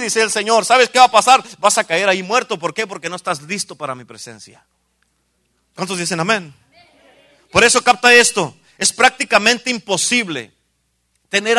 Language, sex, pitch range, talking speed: Spanish, male, 145-230 Hz, 170 wpm